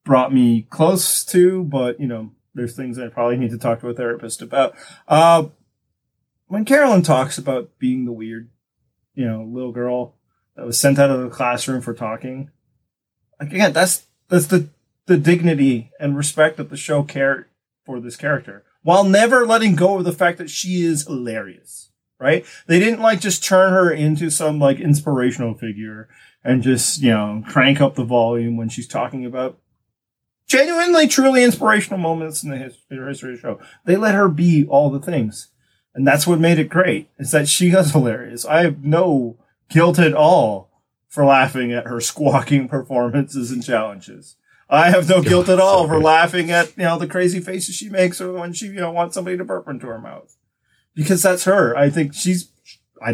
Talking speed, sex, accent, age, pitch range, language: 190 wpm, male, American, 30-49, 125-175 Hz, English